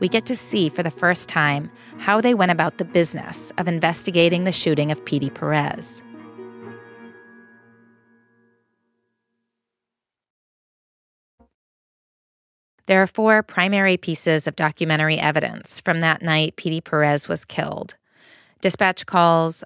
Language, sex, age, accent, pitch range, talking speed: English, female, 30-49, American, 150-190 Hz, 115 wpm